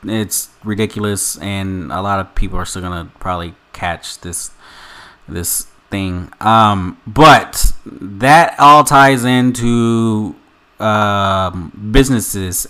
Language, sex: English, male